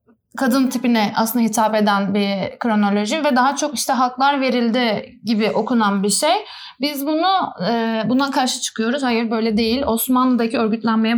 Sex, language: female, Turkish